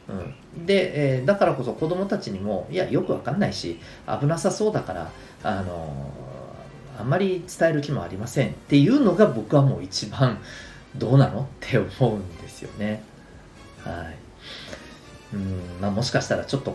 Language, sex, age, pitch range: Japanese, male, 40-59, 100-165 Hz